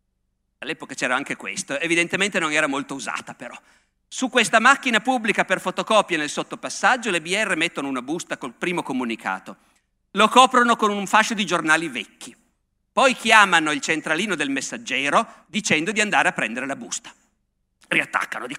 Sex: male